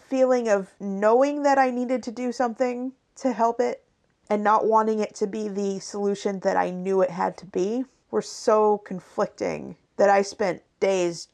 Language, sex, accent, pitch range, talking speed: English, female, American, 195-250 Hz, 180 wpm